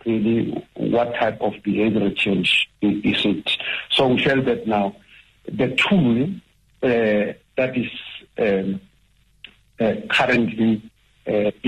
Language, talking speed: English, 115 wpm